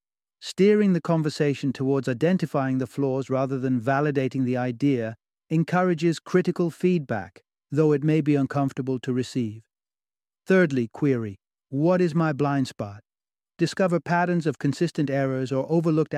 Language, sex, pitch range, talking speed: English, male, 125-155 Hz, 135 wpm